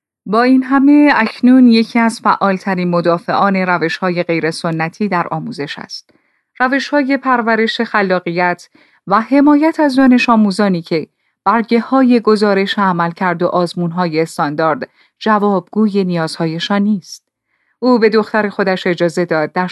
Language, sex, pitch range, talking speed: Persian, female, 180-250 Hz, 135 wpm